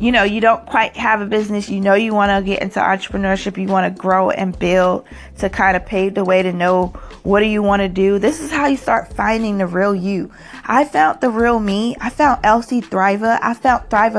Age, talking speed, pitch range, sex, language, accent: 20-39, 230 wpm, 190-225 Hz, female, English, American